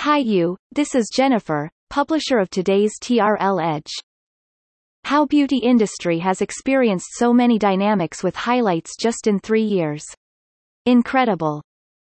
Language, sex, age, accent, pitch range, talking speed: English, female, 30-49, American, 180-245 Hz, 125 wpm